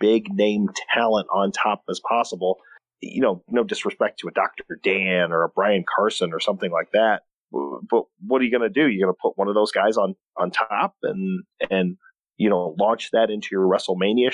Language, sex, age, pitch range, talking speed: English, male, 40-59, 95-120 Hz, 200 wpm